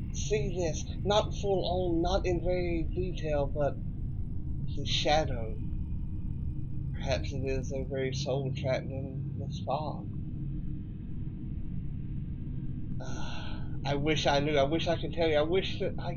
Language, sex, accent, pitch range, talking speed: English, male, American, 125-150 Hz, 135 wpm